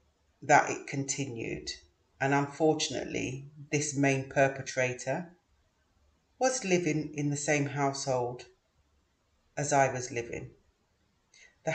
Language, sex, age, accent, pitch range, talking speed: English, female, 30-49, British, 120-155 Hz, 95 wpm